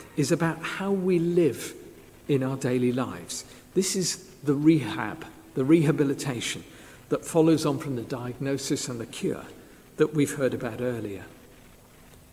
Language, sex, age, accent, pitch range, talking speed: English, male, 50-69, British, 130-170 Hz, 140 wpm